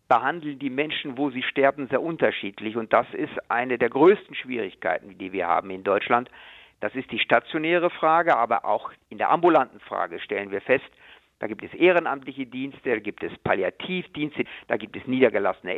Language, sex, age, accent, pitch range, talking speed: German, male, 50-69, German, 120-155 Hz, 180 wpm